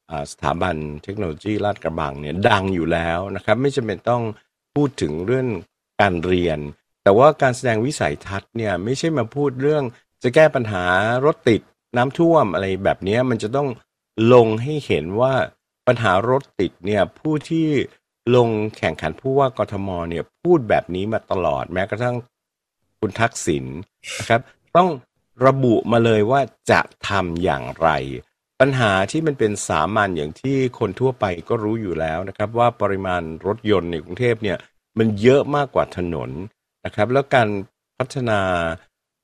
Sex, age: male, 60-79